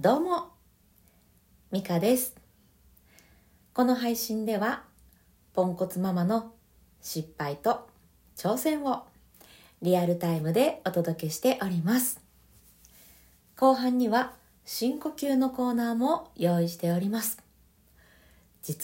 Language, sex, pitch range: Japanese, female, 170-255 Hz